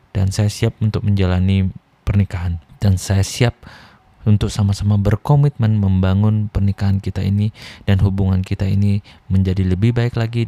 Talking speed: 135 wpm